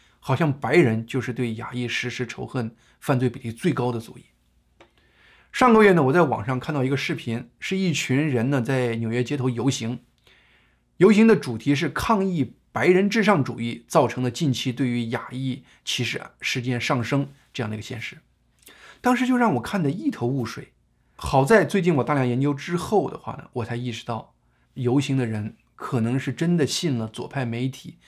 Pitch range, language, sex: 115-160 Hz, Chinese, male